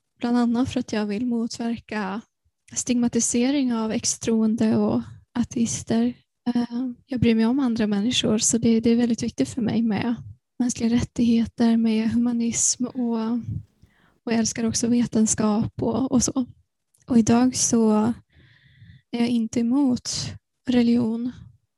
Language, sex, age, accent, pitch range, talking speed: Swedish, female, 10-29, native, 220-245 Hz, 130 wpm